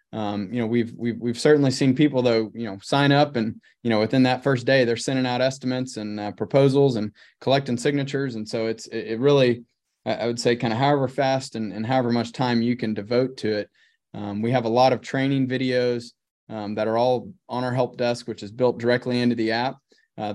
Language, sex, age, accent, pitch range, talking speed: English, male, 20-39, American, 115-135 Hz, 225 wpm